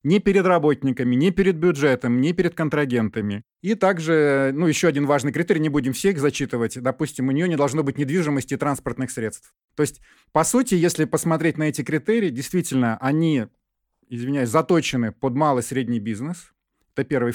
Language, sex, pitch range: Russian, male, 130-165 Hz